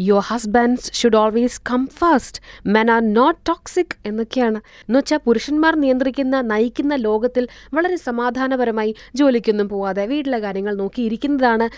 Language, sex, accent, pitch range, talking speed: Malayalam, female, native, 215-275 Hz, 115 wpm